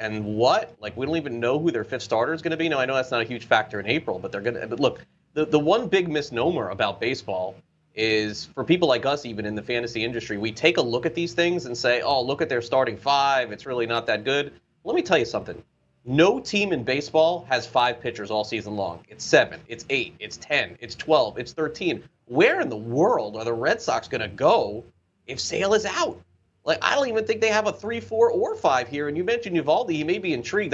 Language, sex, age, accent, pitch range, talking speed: English, male, 30-49, American, 120-165 Hz, 250 wpm